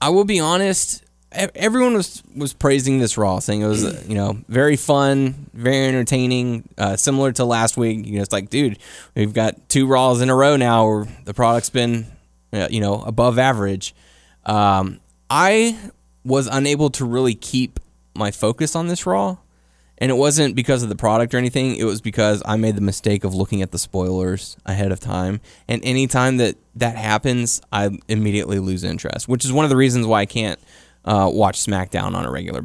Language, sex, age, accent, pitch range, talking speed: English, male, 10-29, American, 95-130 Hz, 195 wpm